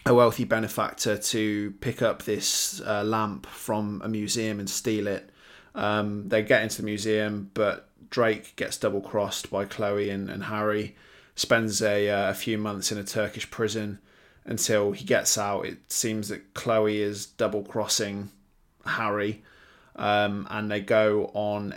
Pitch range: 100-110 Hz